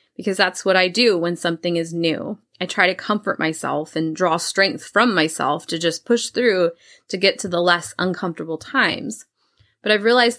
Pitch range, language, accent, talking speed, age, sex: 170-215 Hz, English, American, 190 wpm, 20-39, female